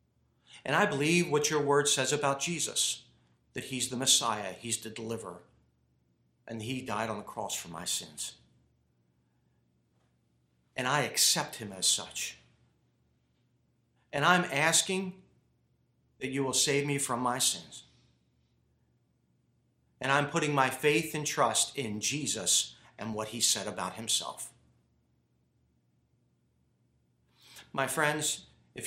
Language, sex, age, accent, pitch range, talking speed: English, male, 40-59, American, 100-150 Hz, 125 wpm